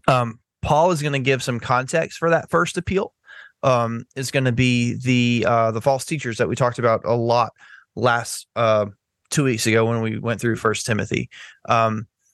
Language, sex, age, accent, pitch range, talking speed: English, male, 20-39, American, 110-130 Hz, 195 wpm